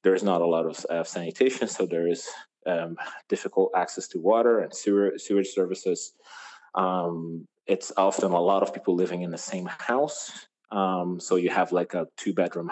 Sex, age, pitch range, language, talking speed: male, 30-49, 85-105 Hz, English, 185 wpm